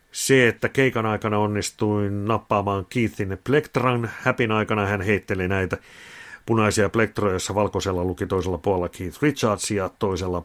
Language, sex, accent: Finnish, male, native